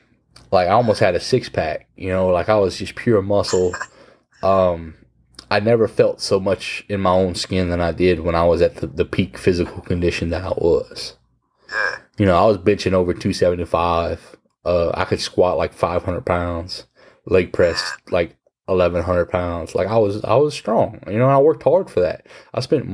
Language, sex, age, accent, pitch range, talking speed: English, male, 20-39, American, 85-100 Hz, 195 wpm